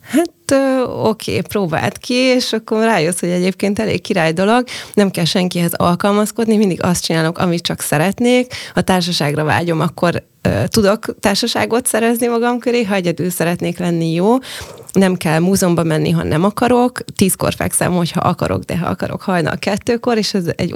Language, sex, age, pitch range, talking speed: Hungarian, female, 20-39, 170-205 Hz, 165 wpm